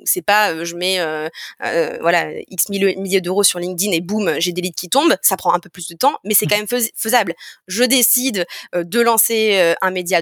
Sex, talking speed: female, 245 wpm